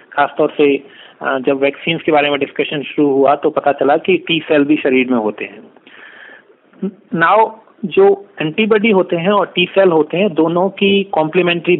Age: 40-59